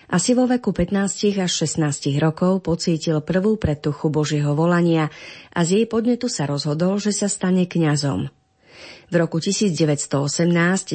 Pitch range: 150-190 Hz